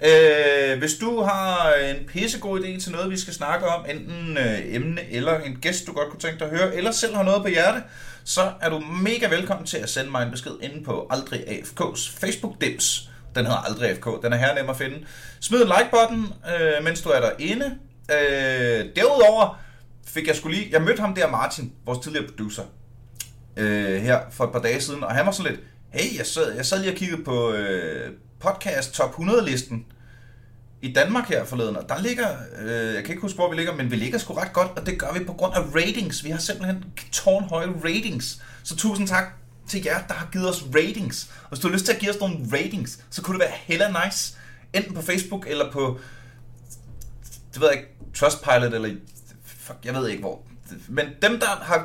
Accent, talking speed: native, 215 wpm